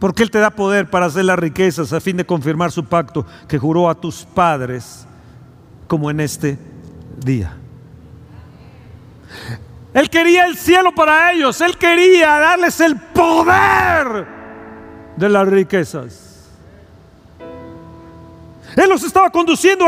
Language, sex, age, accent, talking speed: Spanish, male, 50-69, Mexican, 125 wpm